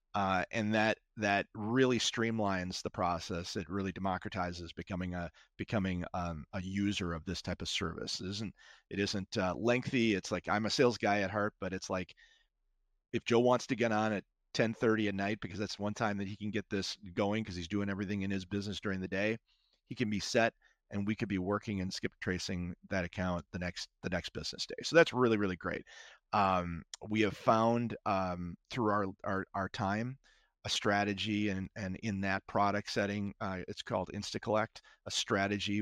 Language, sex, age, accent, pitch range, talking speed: English, male, 30-49, American, 90-105 Hz, 195 wpm